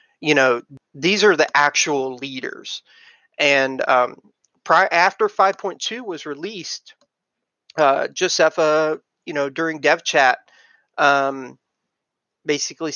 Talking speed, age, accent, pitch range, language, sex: 115 wpm, 30-49, American, 145-190 Hz, English, male